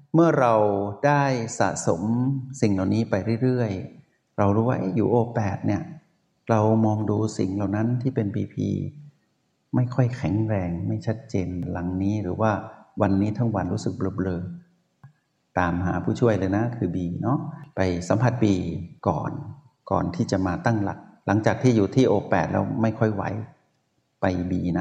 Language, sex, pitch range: Thai, male, 95-125 Hz